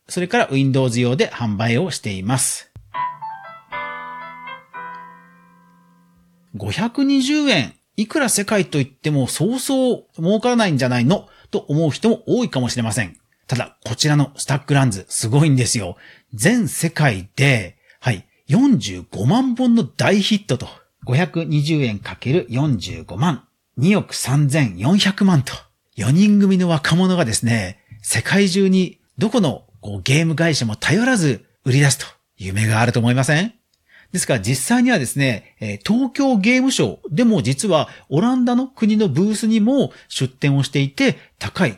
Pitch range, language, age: 120-200 Hz, Japanese, 40-59